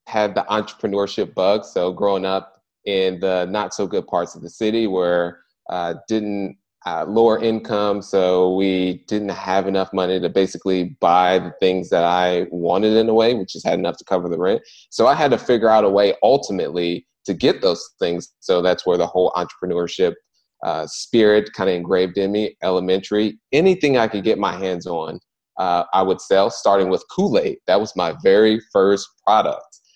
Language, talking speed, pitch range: English, 190 wpm, 90-110 Hz